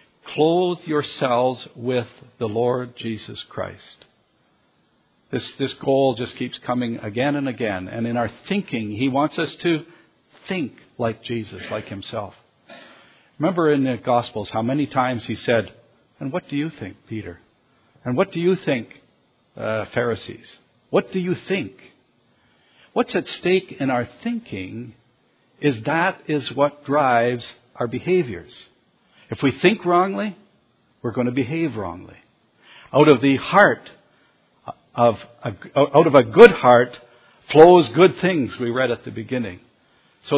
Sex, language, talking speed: male, English, 145 wpm